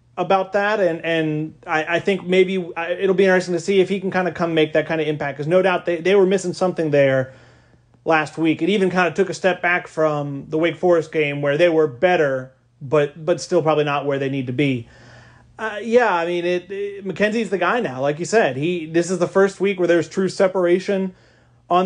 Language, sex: English, male